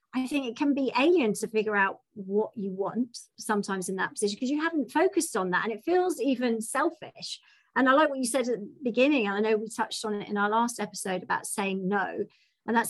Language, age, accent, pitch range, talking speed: English, 40-59, British, 205-255 Hz, 240 wpm